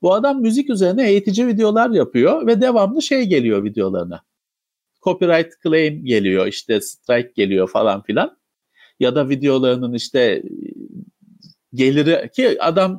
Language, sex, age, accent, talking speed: Turkish, male, 50-69, native, 125 wpm